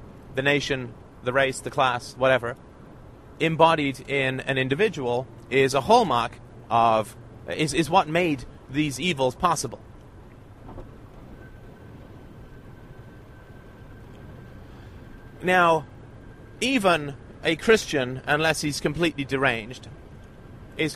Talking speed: 90 wpm